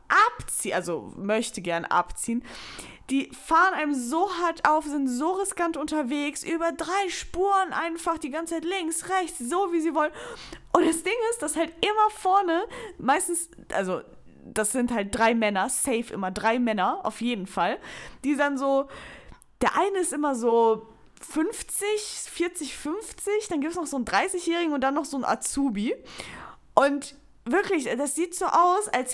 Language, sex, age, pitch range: German, female, 10-29, 250-345 Hz